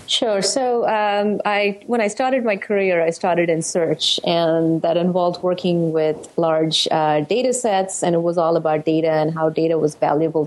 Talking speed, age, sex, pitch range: 190 wpm, 30-49, female, 160-195 Hz